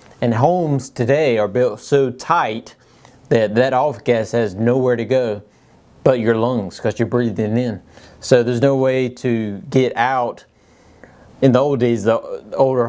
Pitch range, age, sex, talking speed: 115-130 Hz, 30-49, male, 165 wpm